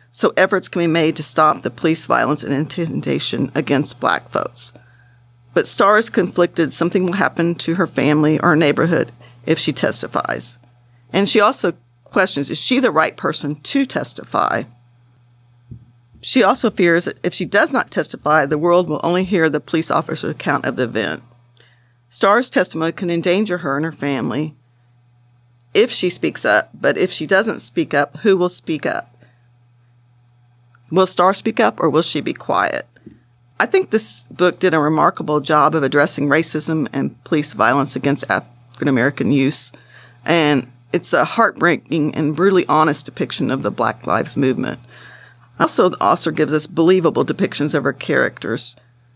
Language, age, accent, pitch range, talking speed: English, 50-69, American, 120-170 Hz, 160 wpm